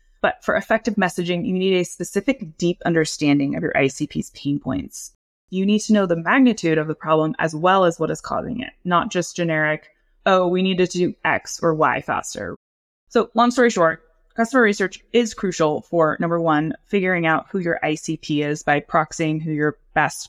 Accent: American